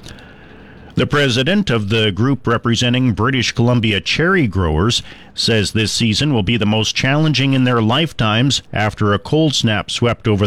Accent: American